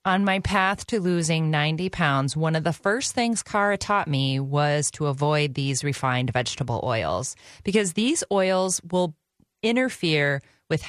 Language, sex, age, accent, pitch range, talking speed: English, female, 30-49, American, 145-200 Hz, 155 wpm